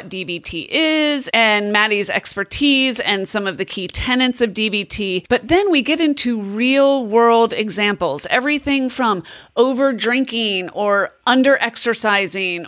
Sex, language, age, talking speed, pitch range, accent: female, English, 30-49, 120 wpm, 185-245 Hz, American